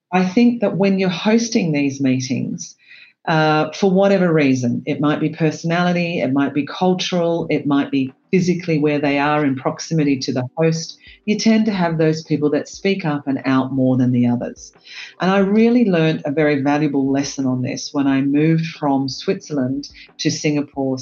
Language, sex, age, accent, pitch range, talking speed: English, female, 40-59, Australian, 140-190 Hz, 185 wpm